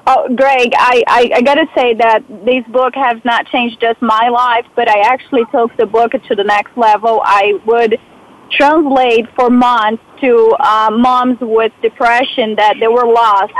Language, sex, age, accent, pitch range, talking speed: English, female, 40-59, American, 230-265 Hz, 175 wpm